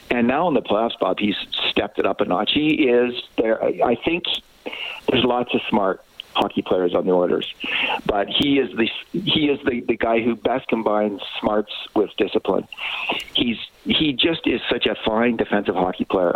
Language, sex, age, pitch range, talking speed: English, male, 50-69, 100-125 Hz, 185 wpm